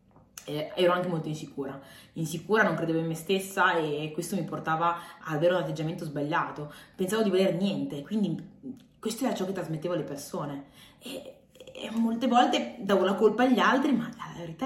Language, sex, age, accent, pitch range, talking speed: Italian, female, 20-39, native, 165-225 Hz, 180 wpm